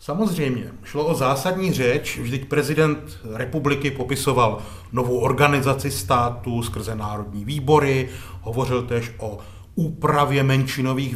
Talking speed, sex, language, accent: 110 wpm, male, Czech, native